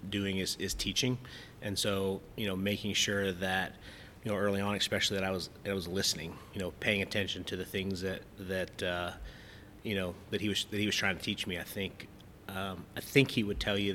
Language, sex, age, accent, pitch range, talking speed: English, male, 30-49, American, 95-100 Hz, 230 wpm